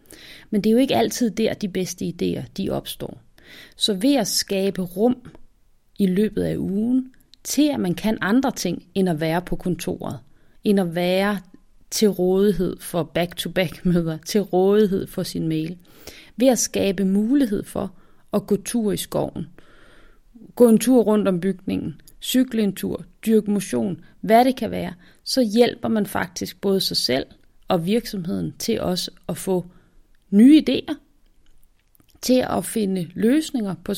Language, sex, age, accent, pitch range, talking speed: Danish, female, 30-49, native, 195-250 Hz, 155 wpm